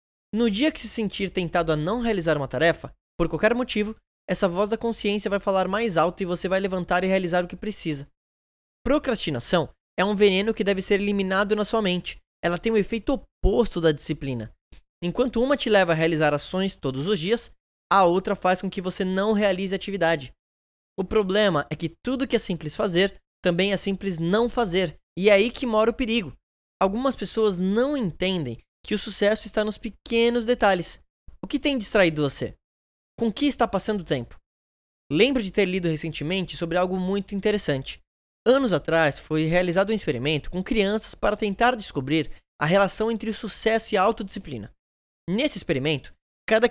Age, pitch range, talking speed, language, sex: 10-29, 165-215 Hz, 185 wpm, Portuguese, male